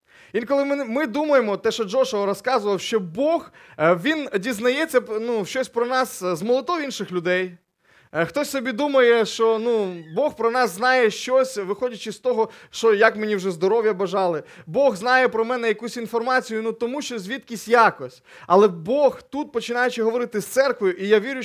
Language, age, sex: Ukrainian, 20-39, male